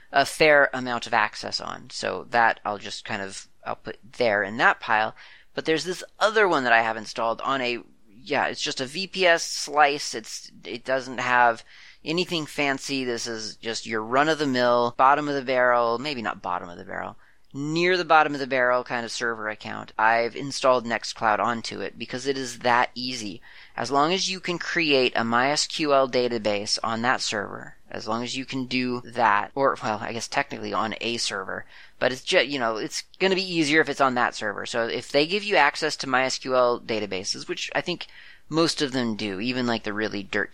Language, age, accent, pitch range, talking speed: English, 30-49, American, 110-140 Hz, 210 wpm